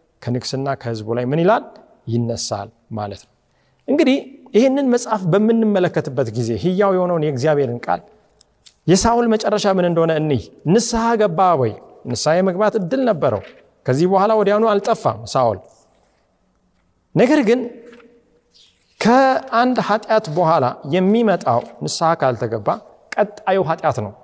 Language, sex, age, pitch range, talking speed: Amharic, male, 40-59, 135-210 Hz, 115 wpm